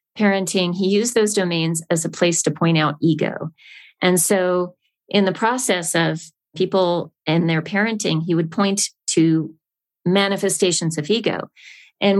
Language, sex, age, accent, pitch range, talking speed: English, female, 40-59, American, 160-195 Hz, 150 wpm